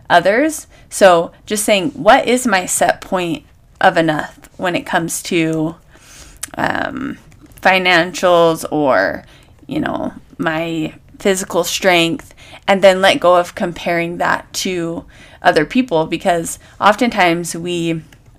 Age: 20-39